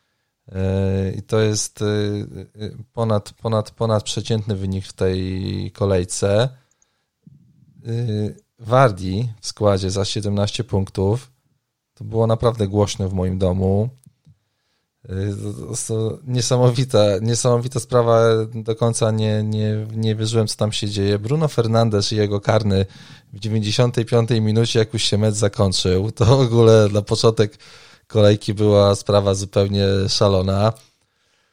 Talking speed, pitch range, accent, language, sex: 120 wpm, 100-120 Hz, native, Polish, male